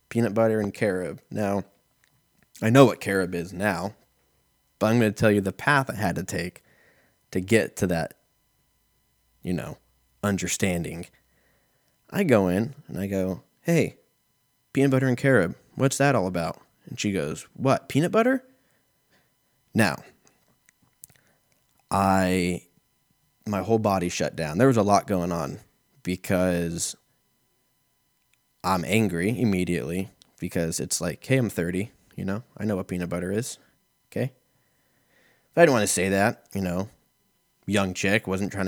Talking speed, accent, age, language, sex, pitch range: 150 wpm, American, 20-39, English, male, 90-115 Hz